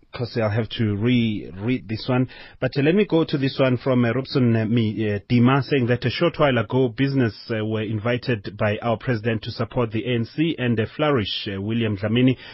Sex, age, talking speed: male, 30-49, 205 wpm